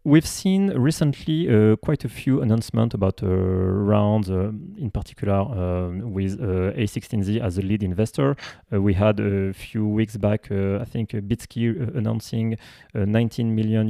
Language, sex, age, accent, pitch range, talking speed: English, male, 30-49, French, 100-125 Hz, 160 wpm